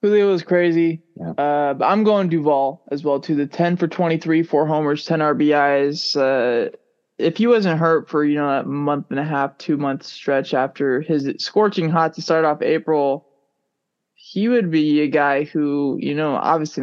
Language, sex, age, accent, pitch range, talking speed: English, male, 20-39, American, 145-190 Hz, 180 wpm